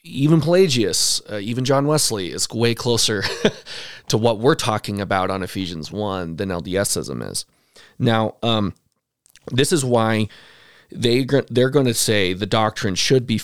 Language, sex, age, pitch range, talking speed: English, male, 30-49, 95-120 Hz, 150 wpm